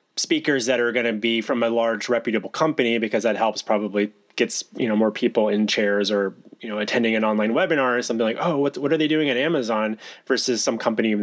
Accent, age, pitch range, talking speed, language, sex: American, 20-39, 110-135 Hz, 235 wpm, English, male